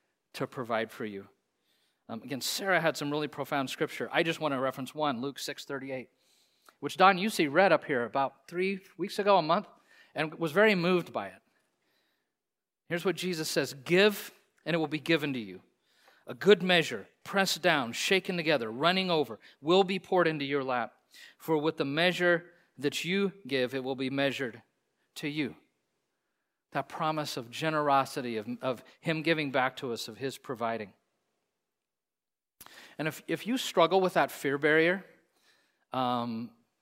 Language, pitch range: English, 135-170 Hz